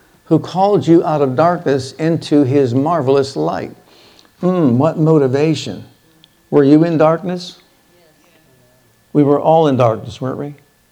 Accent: American